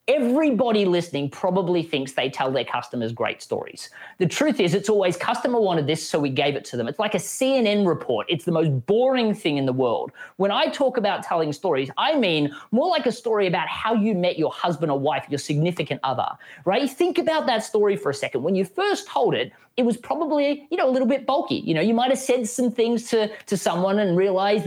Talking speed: 230 wpm